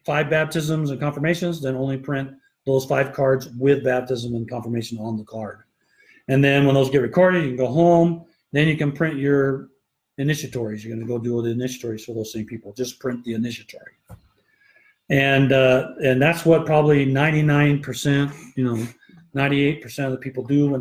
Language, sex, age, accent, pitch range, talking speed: English, male, 40-59, American, 125-150 Hz, 180 wpm